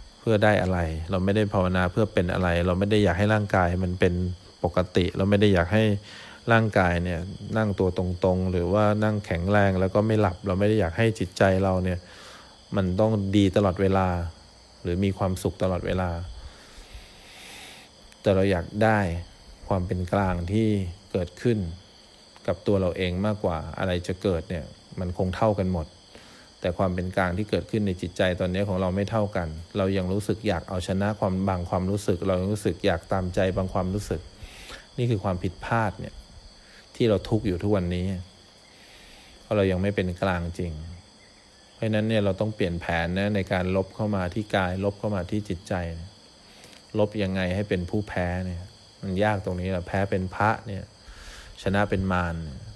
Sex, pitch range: male, 90-105 Hz